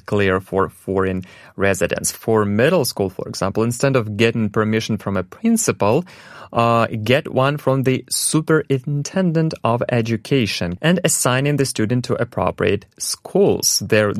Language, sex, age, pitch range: Korean, male, 30-49, 105-135 Hz